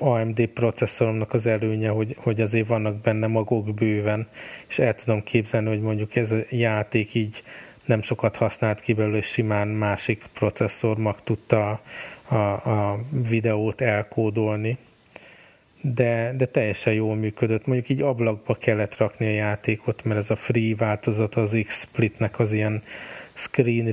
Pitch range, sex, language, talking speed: 105-115 Hz, male, Hungarian, 145 wpm